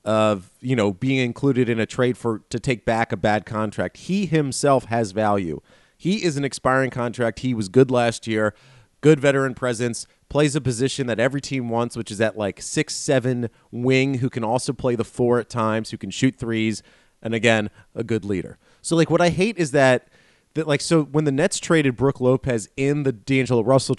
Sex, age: male, 30-49